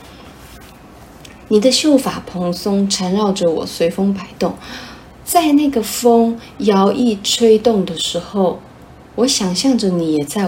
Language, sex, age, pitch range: Chinese, female, 30-49, 170-215 Hz